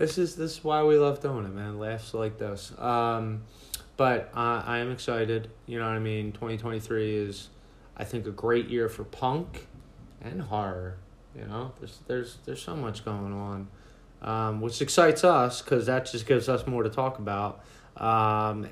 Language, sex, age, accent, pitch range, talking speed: English, male, 20-39, American, 110-130 Hz, 185 wpm